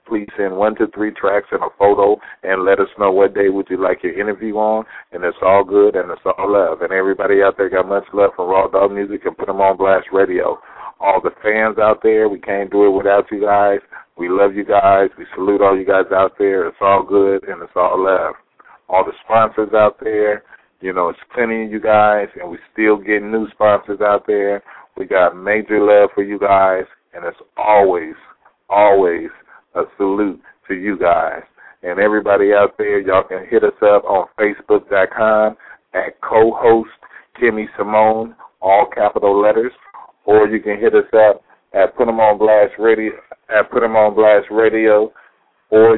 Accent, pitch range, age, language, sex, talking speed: American, 100-110 Hz, 40-59, English, male, 195 wpm